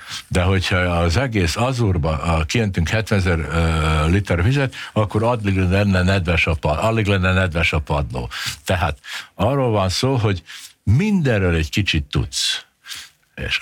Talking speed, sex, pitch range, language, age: 125 wpm, male, 85-105 Hz, Hungarian, 60-79